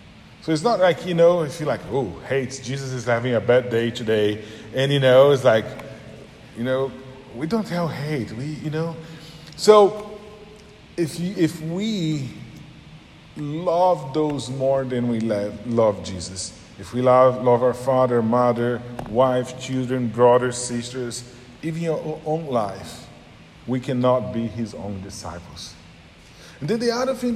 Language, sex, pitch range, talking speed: English, male, 125-175 Hz, 155 wpm